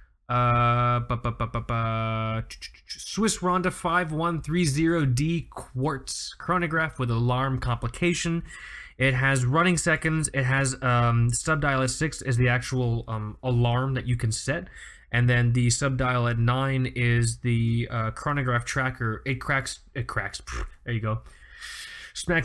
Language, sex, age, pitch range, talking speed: English, male, 20-39, 120-155 Hz, 150 wpm